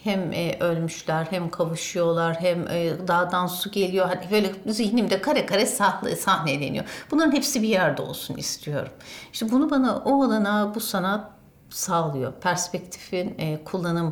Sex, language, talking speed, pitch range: female, Turkish, 130 wpm, 160-235 Hz